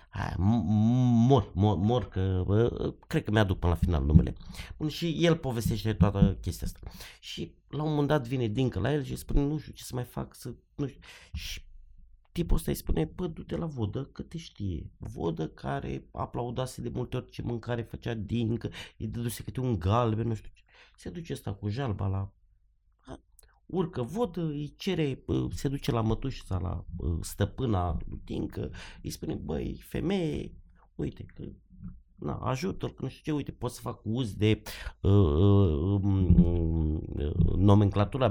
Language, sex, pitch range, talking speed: Romanian, male, 90-125 Hz, 170 wpm